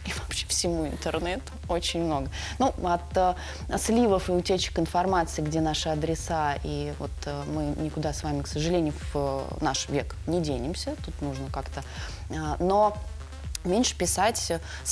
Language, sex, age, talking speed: Russian, female, 20-39, 150 wpm